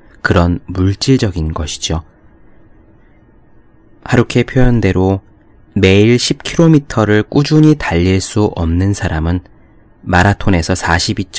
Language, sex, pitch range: Korean, male, 85-115 Hz